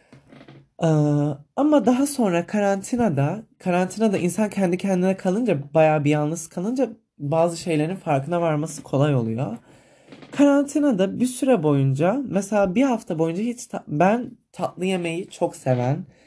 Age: 20-39